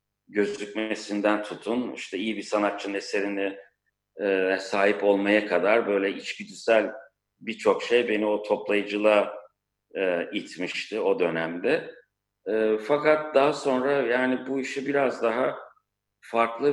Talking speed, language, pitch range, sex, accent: 105 wpm, Turkish, 100-125 Hz, male, native